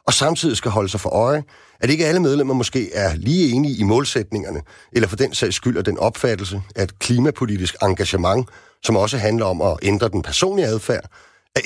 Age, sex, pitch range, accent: 40-59, male, 100-140 Hz, native